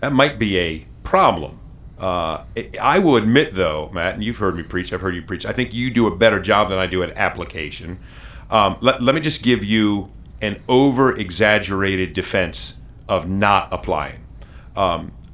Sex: male